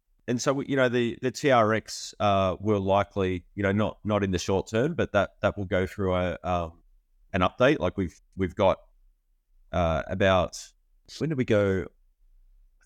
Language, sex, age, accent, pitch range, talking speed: English, male, 30-49, Australian, 90-105 Hz, 180 wpm